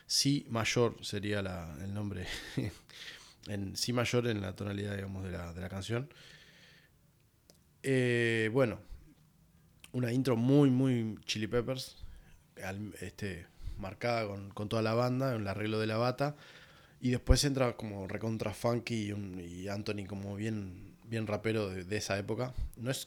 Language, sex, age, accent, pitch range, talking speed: Spanish, male, 20-39, Argentinian, 95-125 Hz, 155 wpm